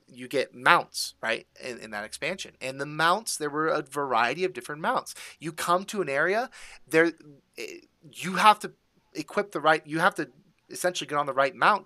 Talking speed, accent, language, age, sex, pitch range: 195 wpm, American, English, 30-49, male, 135-180 Hz